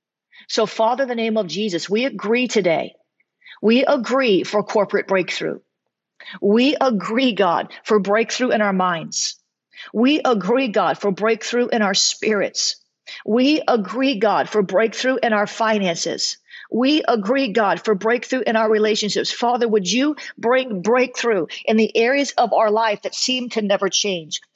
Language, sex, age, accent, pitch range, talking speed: English, female, 50-69, American, 215-255 Hz, 155 wpm